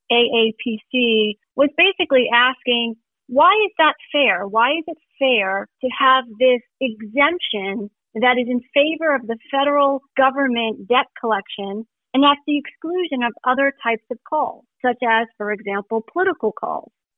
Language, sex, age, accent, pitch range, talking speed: English, female, 40-59, American, 220-275 Hz, 145 wpm